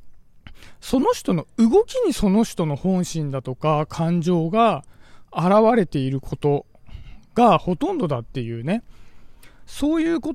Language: Japanese